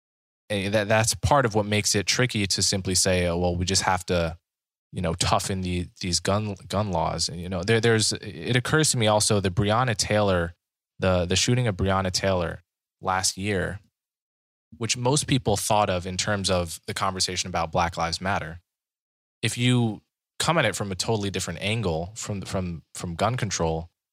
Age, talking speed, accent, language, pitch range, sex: 20-39, 190 wpm, American, English, 90-110 Hz, male